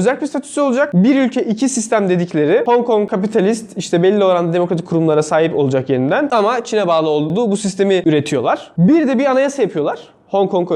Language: Turkish